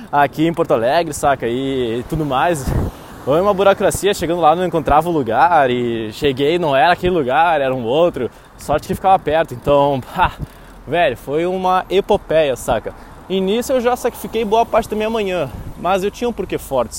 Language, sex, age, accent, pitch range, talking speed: Portuguese, male, 20-39, Brazilian, 130-185 Hz, 190 wpm